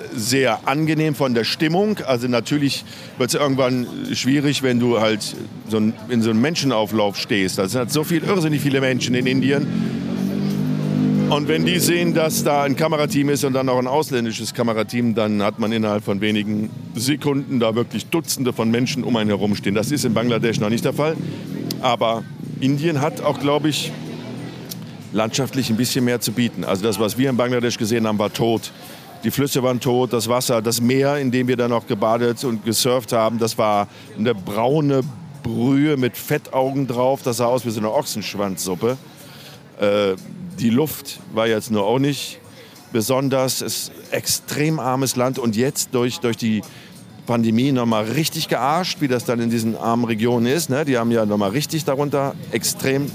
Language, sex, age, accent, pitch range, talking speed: German, male, 50-69, German, 115-145 Hz, 185 wpm